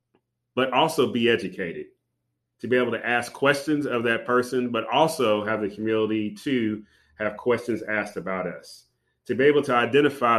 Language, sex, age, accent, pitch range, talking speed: English, male, 30-49, American, 105-130 Hz, 170 wpm